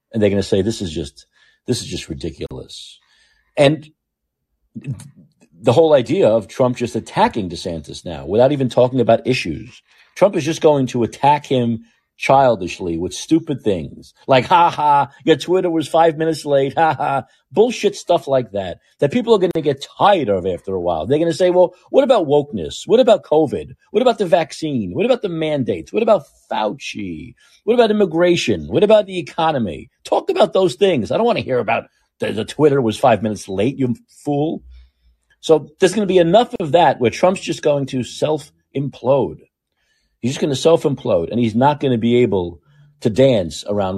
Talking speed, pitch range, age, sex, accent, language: 195 wpm, 100-160 Hz, 40-59, male, American, English